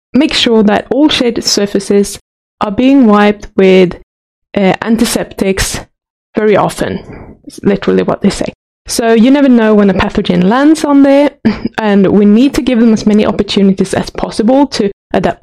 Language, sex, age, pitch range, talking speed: English, female, 20-39, 200-250 Hz, 165 wpm